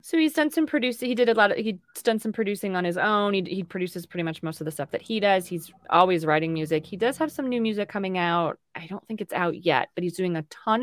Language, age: English, 20-39